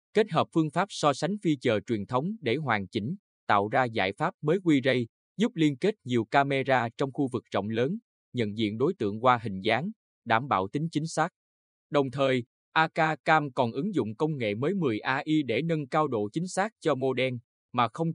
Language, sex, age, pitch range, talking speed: Vietnamese, male, 20-39, 115-155 Hz, 215 wpm